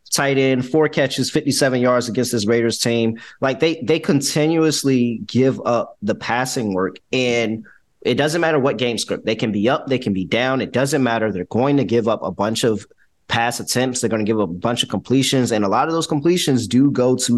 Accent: American